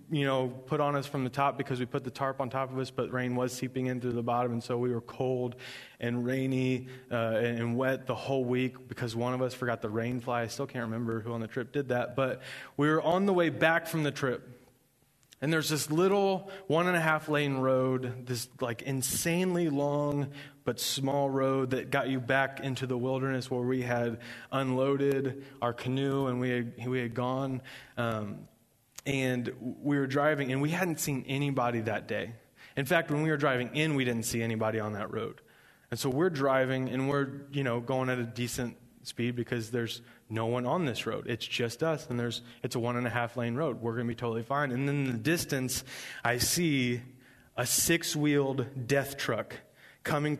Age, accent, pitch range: 20-39, American, 120-140 Hz